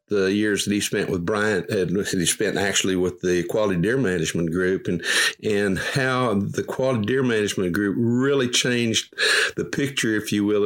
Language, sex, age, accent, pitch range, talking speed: English, male, 60-79, American, 95-130 Hz, 185 wpm